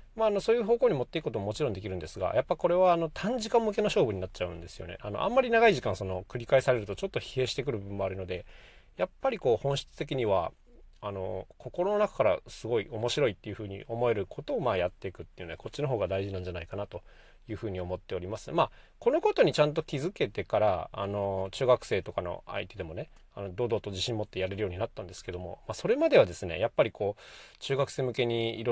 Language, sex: Japanese, male